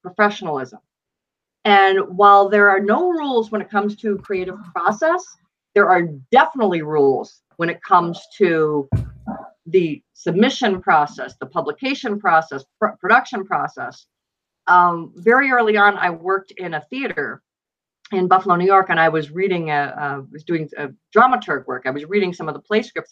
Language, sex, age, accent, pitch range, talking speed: English, female, 50-69, American, 165-210 Hz, 150 wpm